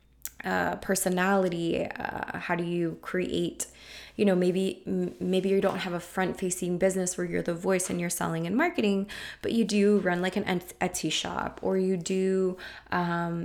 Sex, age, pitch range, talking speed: female, 20-39, 170-200 Hz, 175 wpm